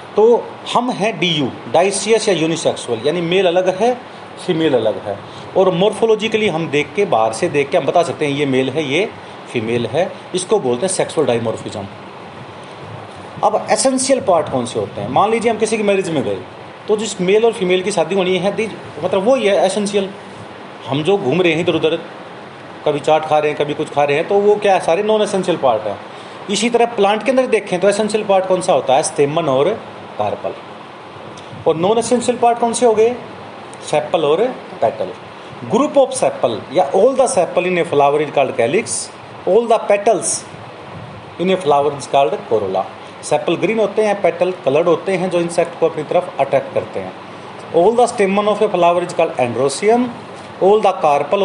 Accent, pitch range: native, 150-215 Hz